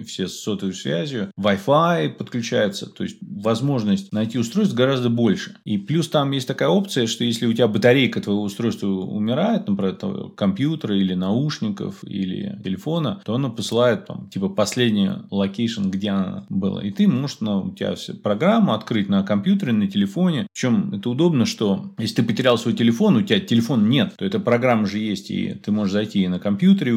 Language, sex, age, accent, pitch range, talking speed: Russian, male, 20-39, native, 105-175 Hz, 180 wpm